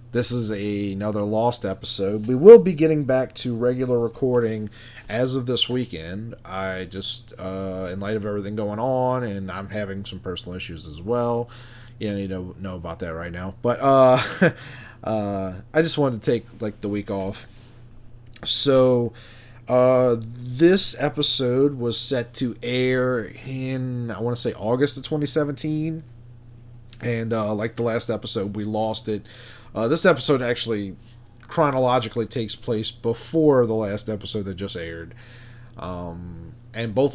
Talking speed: 160 wpm